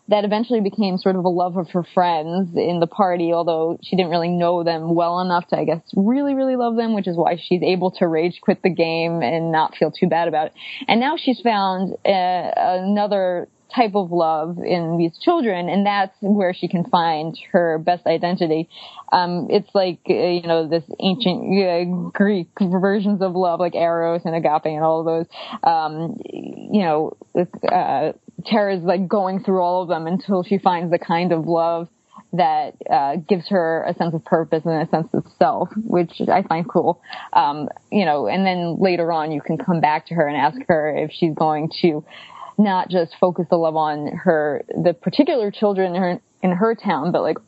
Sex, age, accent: female, 20-39, American